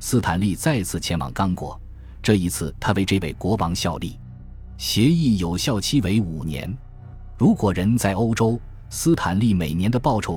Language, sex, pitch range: Chinese, male, 85-115 Hz